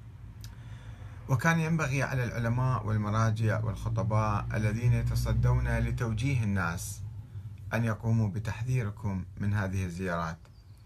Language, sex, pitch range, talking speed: Arabic, male, 100-120 Hz, 90 wpm